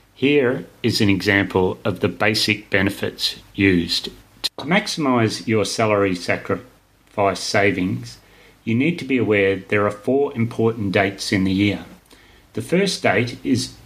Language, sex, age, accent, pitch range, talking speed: English, male, 30-49, Australian, 100-125 Hz, 140 wpm